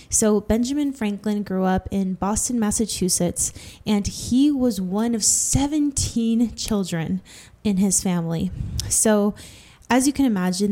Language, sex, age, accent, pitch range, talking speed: English, female, 10-29, American, 185-215 Hz, 130 wpm